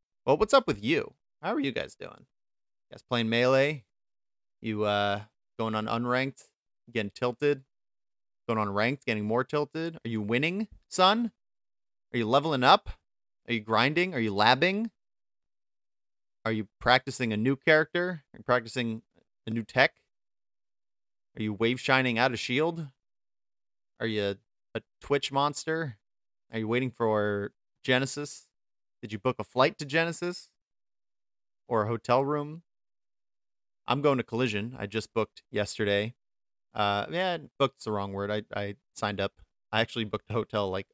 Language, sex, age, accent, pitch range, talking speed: English, male, 30-49, American, 105-135 Hz, 155 wpm